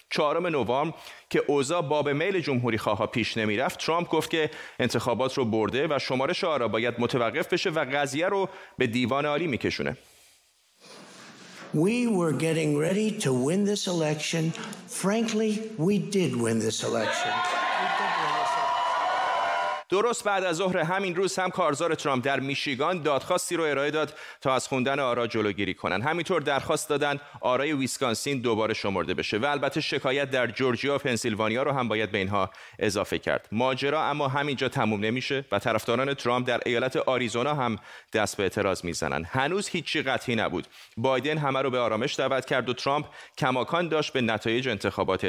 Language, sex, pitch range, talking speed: Persian, male, 120-160 Hz, 140 wpm